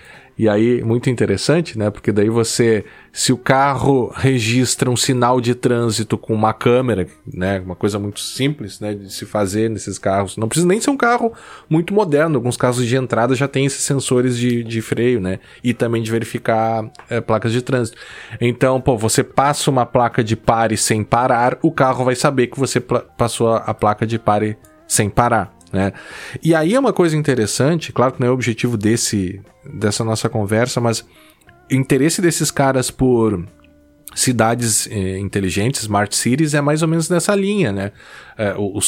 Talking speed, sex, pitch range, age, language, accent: 180 wpm, male, 110-140 Hz, 20-39, Portuguese, Brazilian